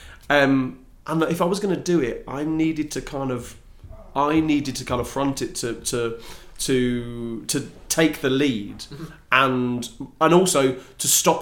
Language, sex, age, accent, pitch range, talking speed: English, male, 30-49, British, 120-150 Hz, 175 wpm